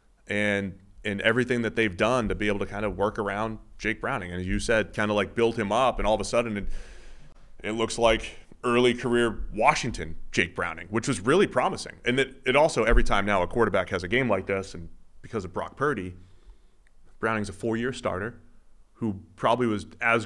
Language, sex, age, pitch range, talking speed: English, male, 30-49, 95-115 Hz, 215 wpm